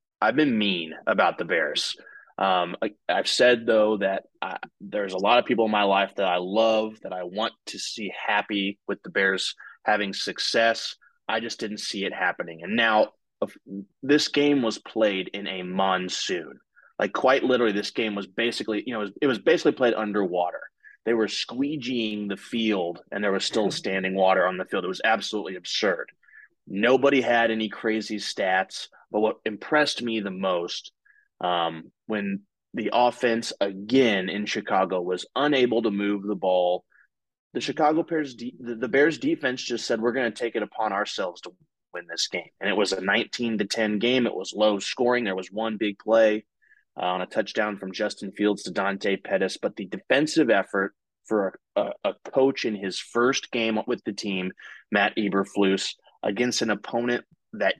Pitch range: 100-120 Hz